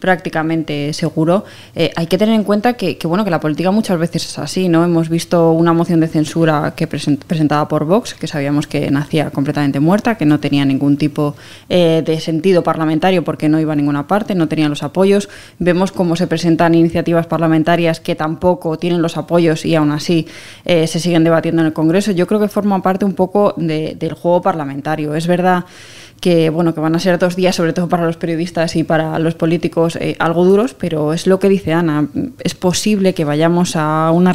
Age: 20-39